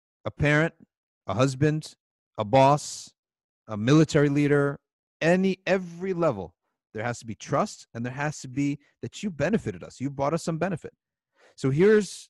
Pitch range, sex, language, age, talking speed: 110-140 Hz, male, English, 40-59, 160 wpm